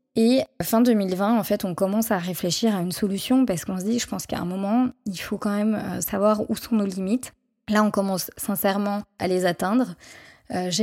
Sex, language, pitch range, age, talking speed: female, French, 190-220 Hz, 20-39, 210 wpm